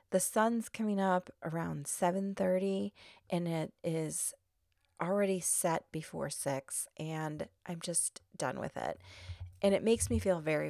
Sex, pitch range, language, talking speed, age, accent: female, 155-190 Hz, English, 140 wpm, 30-49, American